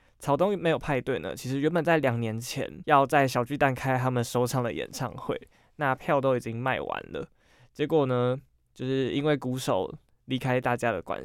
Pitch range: 125-155 Hz